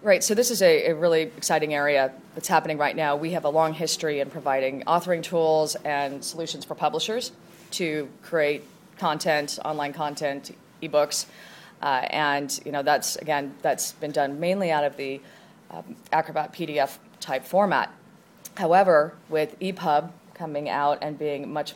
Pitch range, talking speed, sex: 145-180 Hz, 165 wpm, female